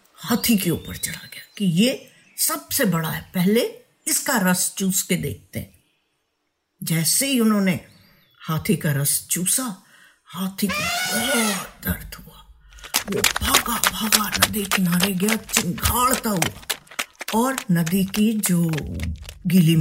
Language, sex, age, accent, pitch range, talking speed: Hindi, female, 50-69, native, 165-235 Hz, 125 wpm